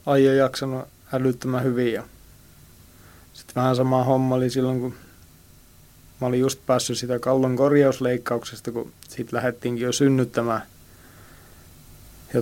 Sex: male